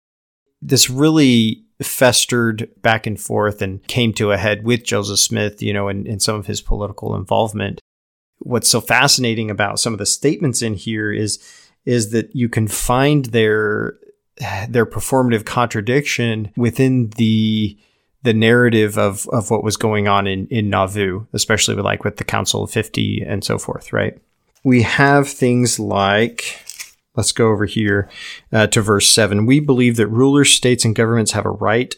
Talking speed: 170 wpm